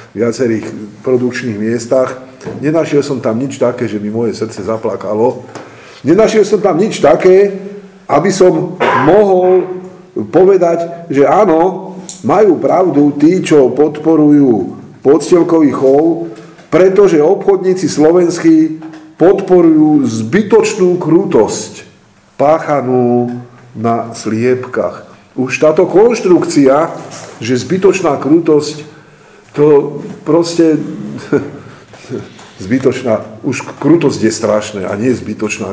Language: Slovak